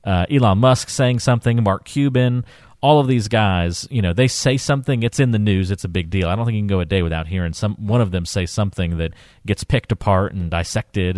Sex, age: male, 40-59